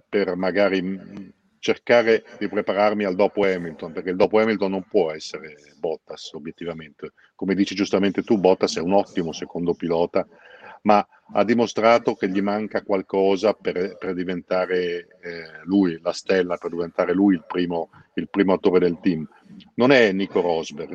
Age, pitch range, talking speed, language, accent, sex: 50-69, 90-105 Hz, 155 wpm, Italian, native, male